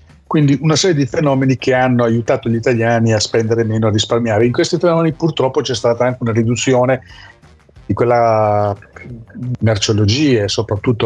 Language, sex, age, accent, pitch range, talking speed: Italian, male, 40-59, native, 105-130 Hz, 155 wpm